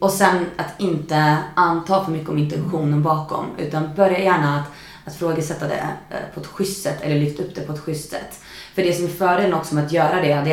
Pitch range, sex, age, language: 155-195 Hz, female, 30-49, Swedish